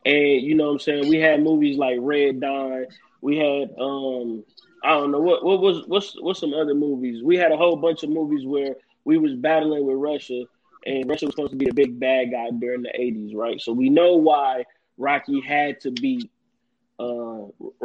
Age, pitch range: 20-39, 135-165 Hz